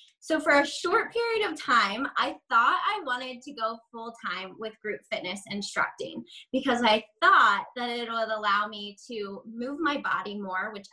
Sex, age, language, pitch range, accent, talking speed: female, 20-39, English, 205-270 Hz, American, 175 wpm